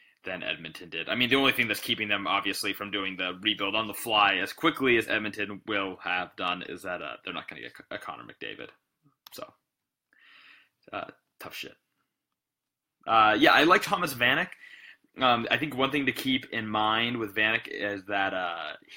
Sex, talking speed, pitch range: male, 195 wpm, 100-125 Hz